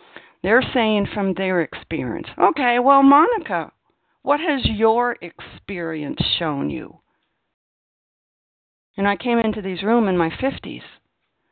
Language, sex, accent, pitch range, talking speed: English, female, American, 155-220 Hz, 120 wpm